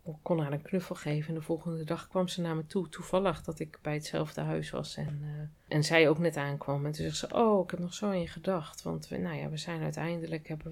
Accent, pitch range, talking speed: Dutch, 150-175 Hz, 265 wpm